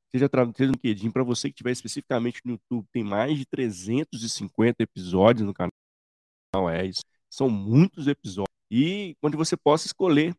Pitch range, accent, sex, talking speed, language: 110-135 Hz, Brazilian, male, 160 wpm, Portuguese